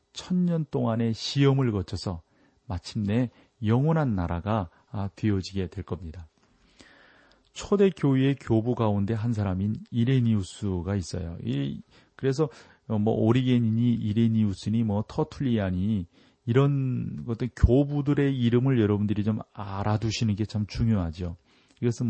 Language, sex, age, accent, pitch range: Korean, male, 40-59, native, 100-130 Hz